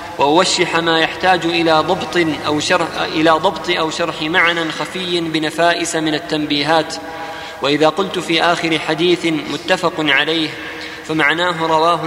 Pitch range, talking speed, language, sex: 155-170 Hz, 125 wpm, Arabic, male